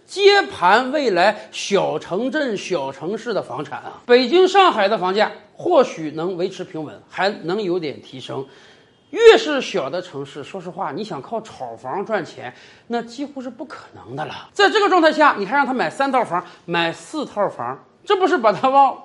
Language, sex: Chinese, male